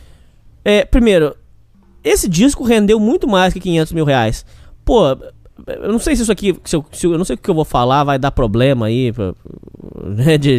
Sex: male